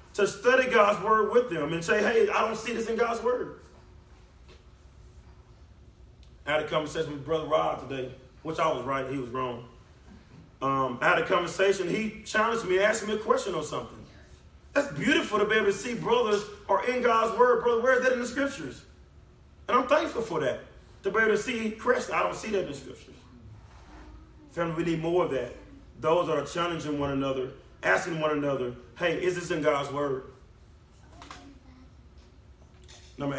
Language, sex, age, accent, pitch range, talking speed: English, male, 30-49, American, 135-200 Hz, 185 wpm